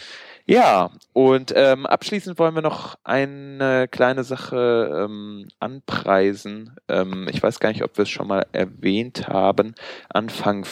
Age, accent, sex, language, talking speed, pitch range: 20-39, German, male, German, 140 wpm, 95-115 Hz